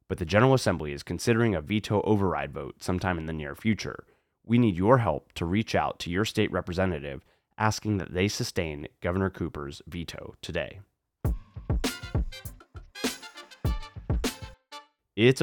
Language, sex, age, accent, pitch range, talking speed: English, male, 30-49, American, 85-115 Hz, 135 wpm